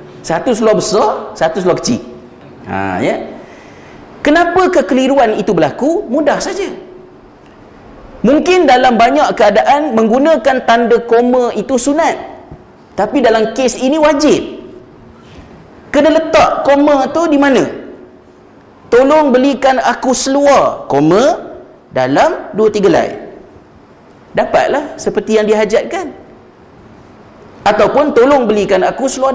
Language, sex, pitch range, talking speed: Malay, male, 210-300 Hz, 105 wpm